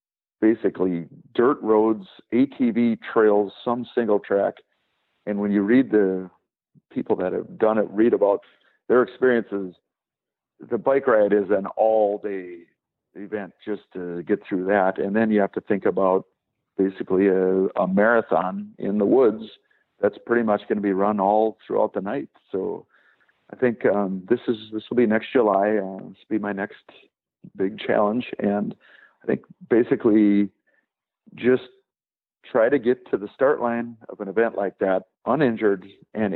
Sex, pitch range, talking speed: male, 100-120 Hz, 160 wpm